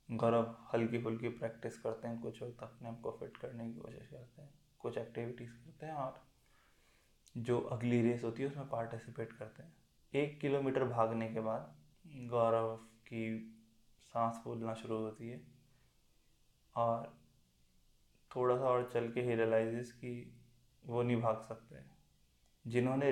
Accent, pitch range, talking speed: native, 110-125 Hz, 145 wpm